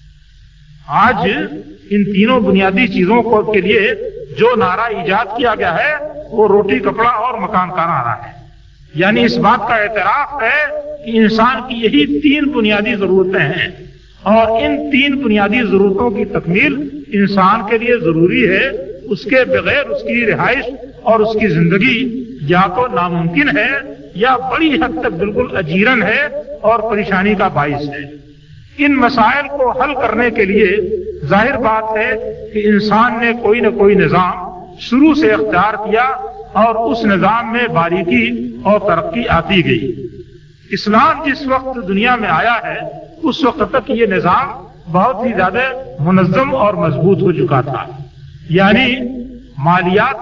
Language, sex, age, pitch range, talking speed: Urdu, male, 50-69, 185-250 Hz, 150 wpm